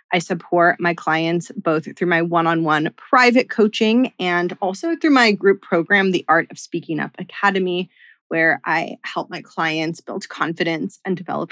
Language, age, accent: English, 20-39, American